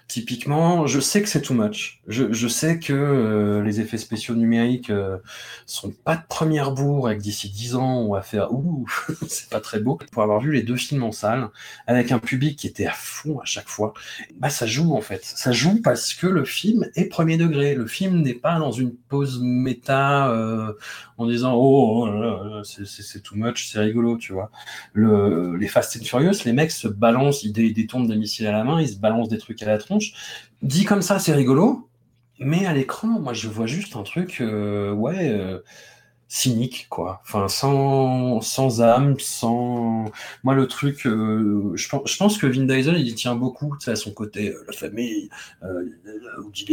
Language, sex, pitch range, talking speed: French, male, 105-140 Hz, 205 wpm